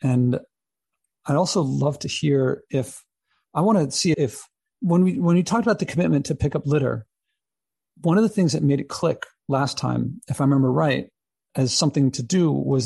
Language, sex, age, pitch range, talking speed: English, male, 40-59, 130-160 Hz, 200 wpm